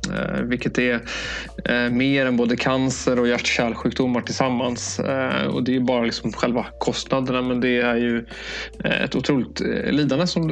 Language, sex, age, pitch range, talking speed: Swedish, male, 20-39, 120-135 Hz, 145 wpm